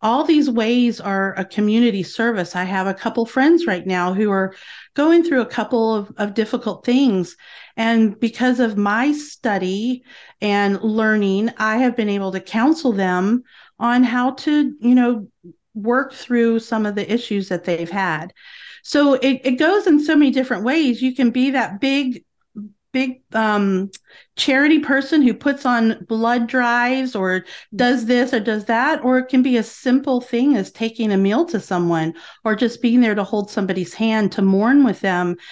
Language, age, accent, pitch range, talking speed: English, 40-59, American, 195-250 Hz, 180 wpm